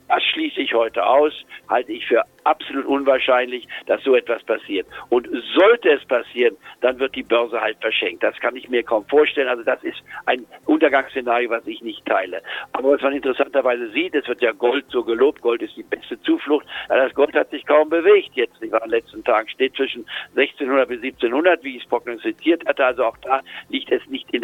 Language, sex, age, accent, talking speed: German, male, 60-79, German, 210 wpm